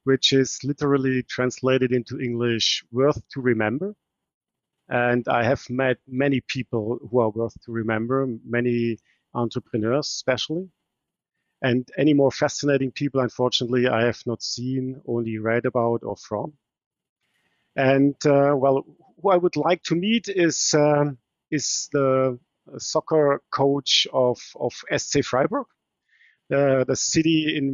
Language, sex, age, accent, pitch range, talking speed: English, male, 50-69, German, 125-145 Hz, 130 wpm